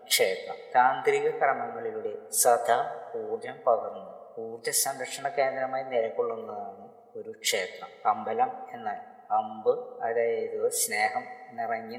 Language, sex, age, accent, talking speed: Malayalam, female, 20-39, native, 90 wpm